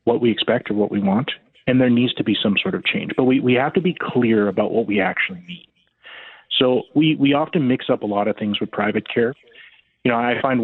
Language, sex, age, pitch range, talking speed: English, male, 30-49, 105-130 Hz, 255 wpm